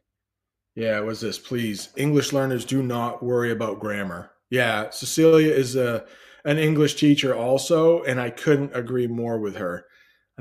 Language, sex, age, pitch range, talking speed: English, male, 30-49, 105-150 Hz, 160 wpm